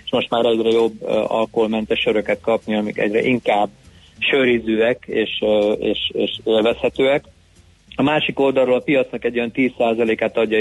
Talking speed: 140 wpm